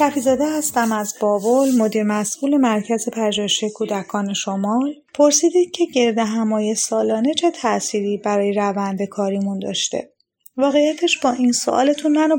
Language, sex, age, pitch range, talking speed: Persian, female, 30-49, 215-275 Hz, 130 wpm